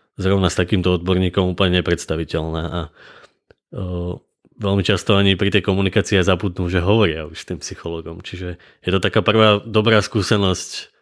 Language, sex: Slovak, male